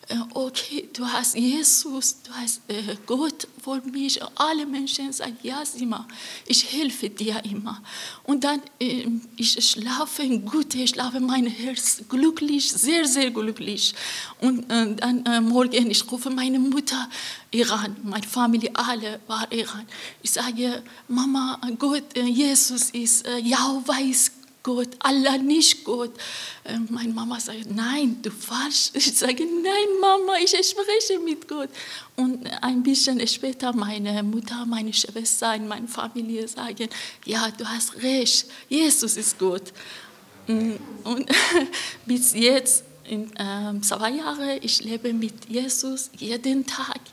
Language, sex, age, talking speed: German, female, 30-49, 140 wpm